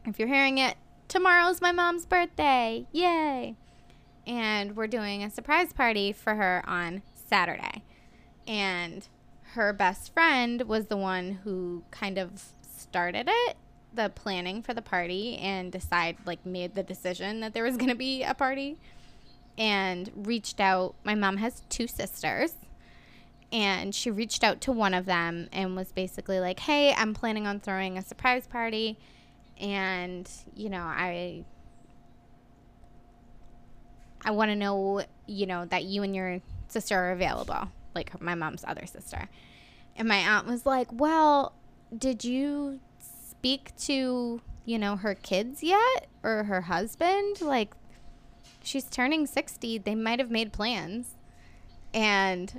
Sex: female